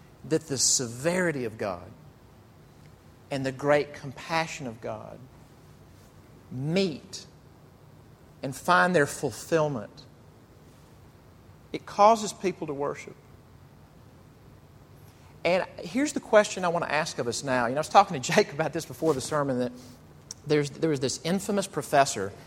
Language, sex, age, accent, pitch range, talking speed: English, male, 50-69, American, 130-180 Hz, 135 wpm